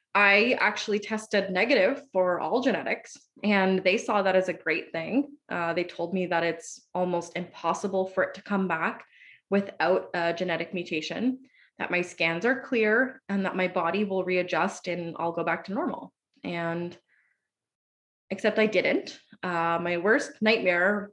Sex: female